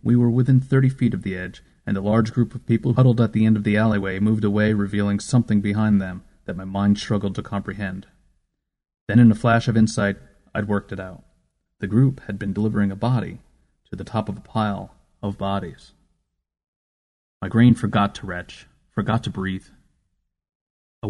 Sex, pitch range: male, 100-115 Hz